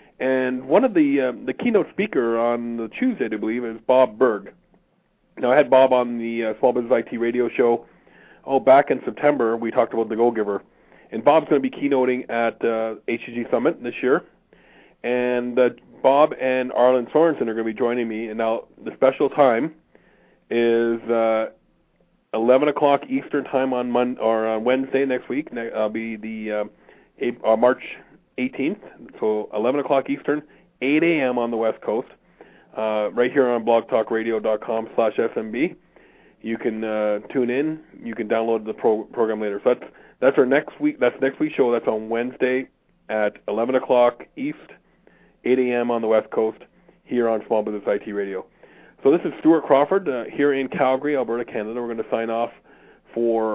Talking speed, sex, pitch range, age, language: 185 wpm, male, 115-130 Hz, 40-59, English